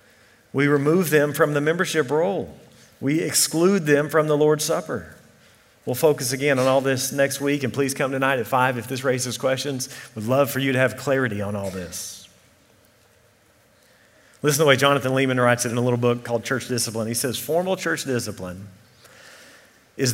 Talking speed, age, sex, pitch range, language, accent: 190 wpm, 40-59, male, 125-155 Hz, English, American